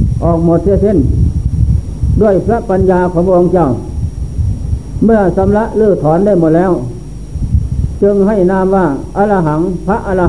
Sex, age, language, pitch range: male, 60-79, Thai, 145-195 Hz